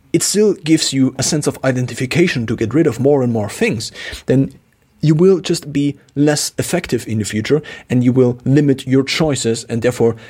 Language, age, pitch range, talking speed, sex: English, 40-59, 110-145 Hz, 200 wpm, male